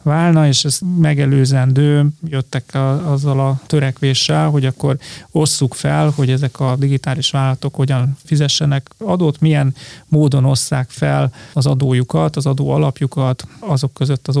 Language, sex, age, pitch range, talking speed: Hungarian, male, 30-49, 135-150 Hz, 140 wpm